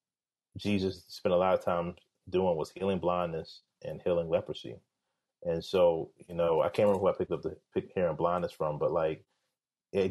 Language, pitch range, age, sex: English, 90-130 Hz, 30-49, male